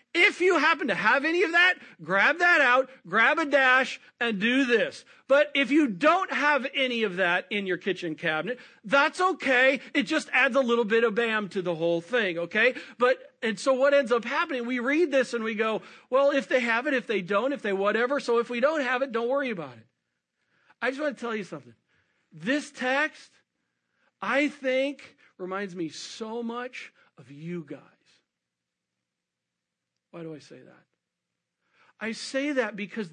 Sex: male